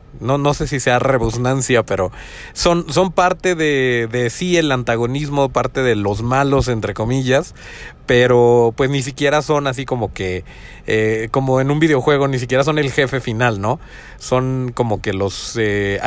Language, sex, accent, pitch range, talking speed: Spanish, male, Mexican, 120-165 Hz, 170 wpm